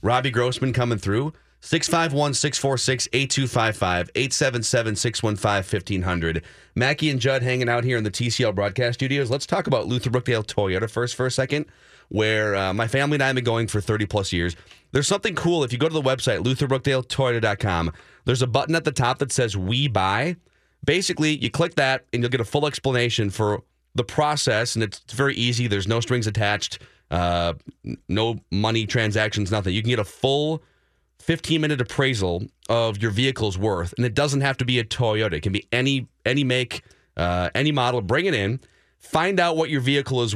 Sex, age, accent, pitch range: male, 30-49, American, 105-135 Hz